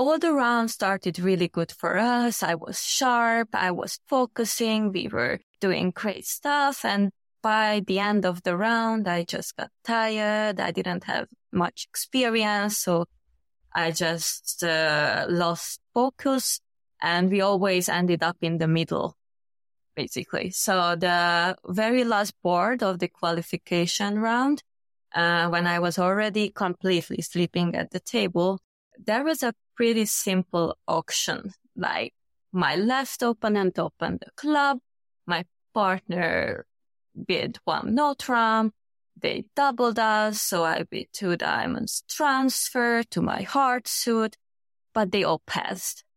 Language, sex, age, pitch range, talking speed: English, female, 20-39, 175-240 Hz, 135 wpm